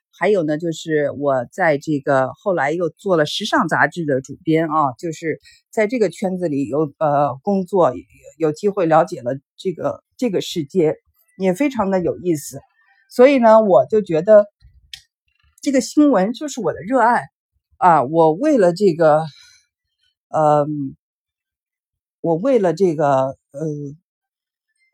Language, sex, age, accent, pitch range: Chinese, female, 50-69, native, 155-240 Hz